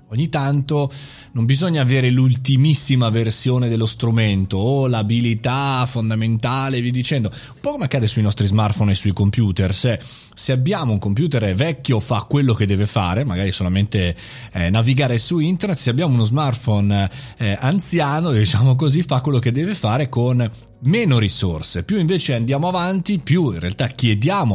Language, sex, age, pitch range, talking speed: Italian, male, 30-49, 110-140 Hz, 160 wpm